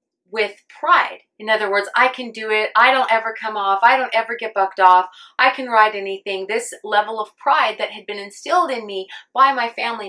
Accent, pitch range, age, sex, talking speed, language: American, 205-260 Hz, 30-49, female, 220 wpm, English